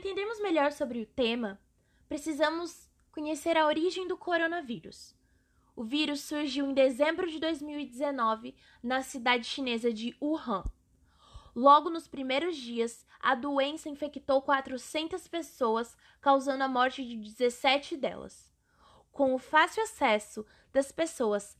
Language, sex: Portuguese, female